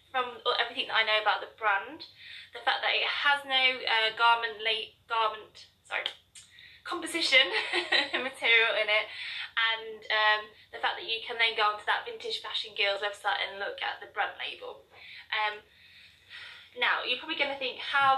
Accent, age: British, 20-39